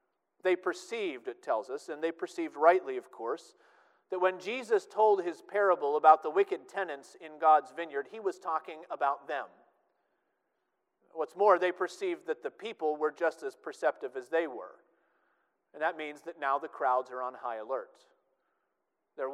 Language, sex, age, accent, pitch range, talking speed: English, male, 40-59, American, 155-260 Hz, 170 wpm